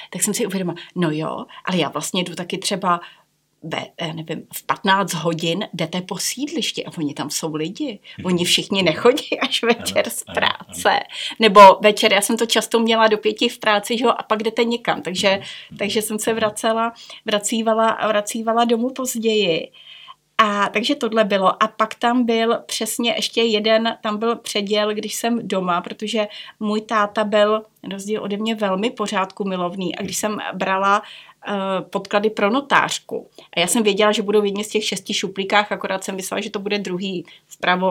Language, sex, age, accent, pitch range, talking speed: Czech, female, 30-49, native, 190-225 Hz, 175 wpm